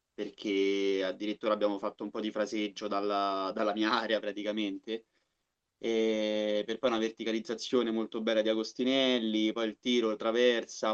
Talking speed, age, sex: 135 wpm, 20-39, male